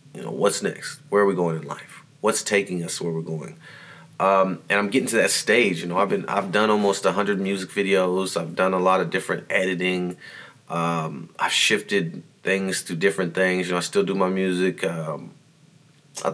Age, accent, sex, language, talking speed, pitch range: 30-49, American, male, English, 210 wpm, 90-115 Hz